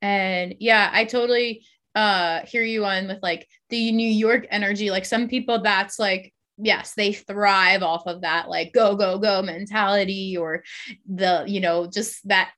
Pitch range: 190-235 Hz